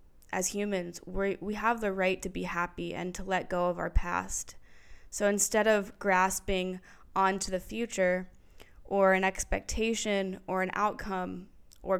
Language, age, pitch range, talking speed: English, 20-39, 180-200 Hz, 150 wpm